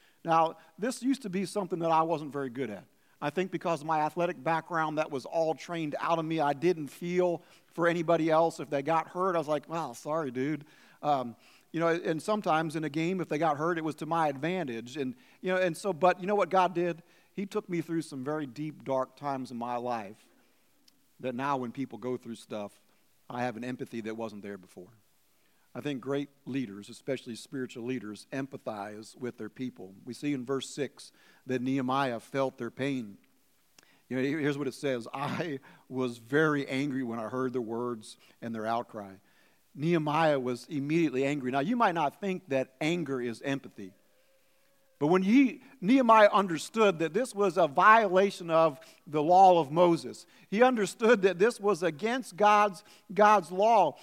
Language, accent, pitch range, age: English, American, 135-195 Hz, 50-69